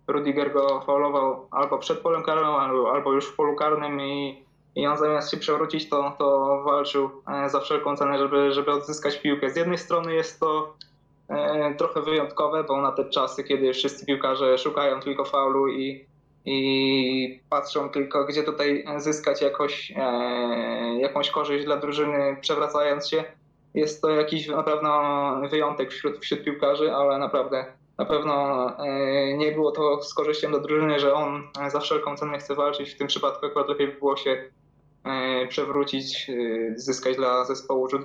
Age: 20-39